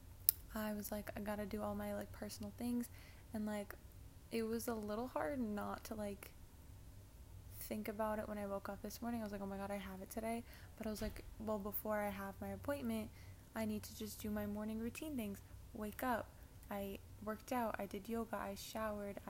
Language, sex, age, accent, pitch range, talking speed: English, female, 20-39, American, 195-225 Hz, 215 wpm